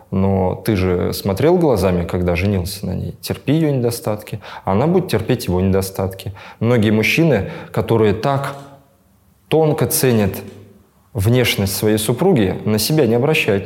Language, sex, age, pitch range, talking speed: Russian, male, 20-39, 95-125 Hz, 130 wpm